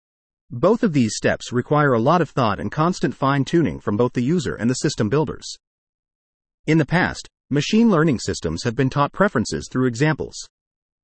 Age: 40-59